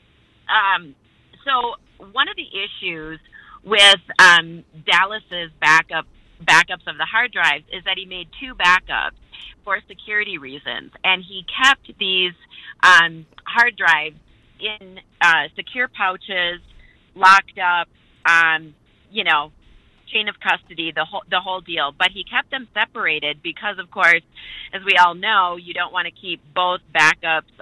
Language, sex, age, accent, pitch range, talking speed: English, female, 30-49, American, 160-195 Hz, 140 wpm